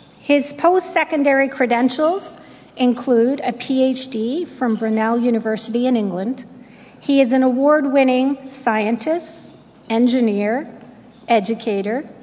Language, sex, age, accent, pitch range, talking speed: English, female, 50-69, American, 230-275 Hz, 90 wpm